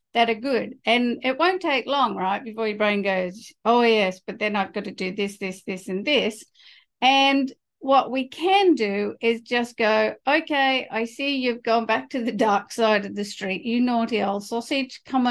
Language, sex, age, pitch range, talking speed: English, female, 50-69, 210-260 Hz, 200 wpm